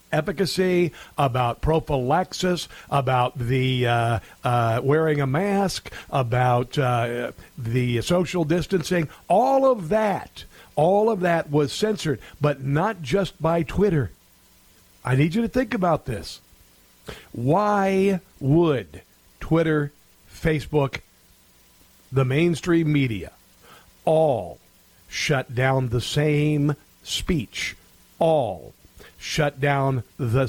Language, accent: English, American